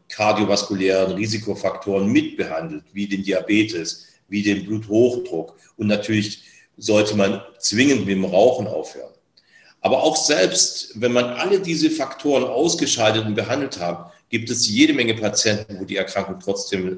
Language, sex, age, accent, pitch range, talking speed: German, male, 40-59, German, 100-125 Hz, 140 wpm